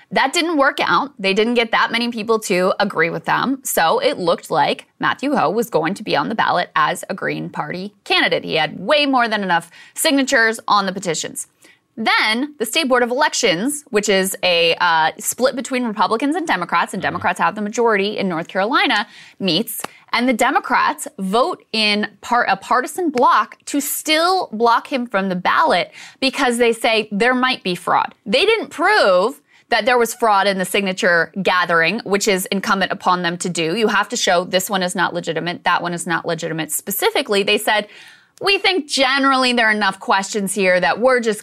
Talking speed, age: 195 wpm, 20-39